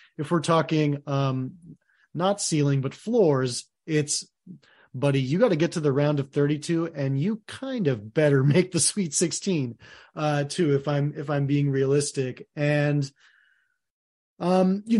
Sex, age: male, 30-49